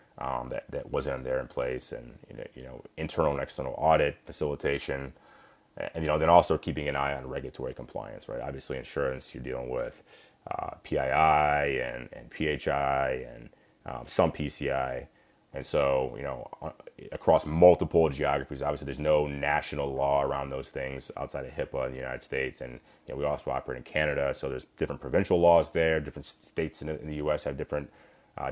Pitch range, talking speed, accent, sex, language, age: 70-80 Hz, 185 wpm, American, male, English, 30-49